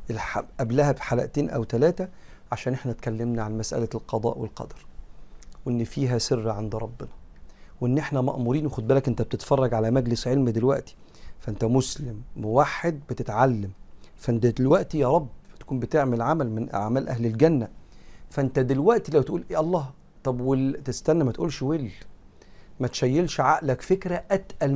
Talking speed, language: 140 wpm, Arabic